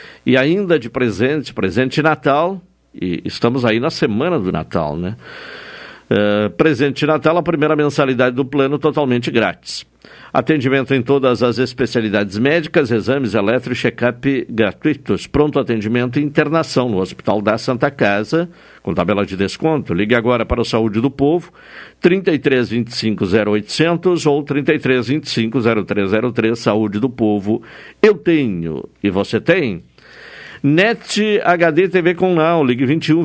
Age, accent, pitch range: 60-79, Brazilian, 120-160 Hz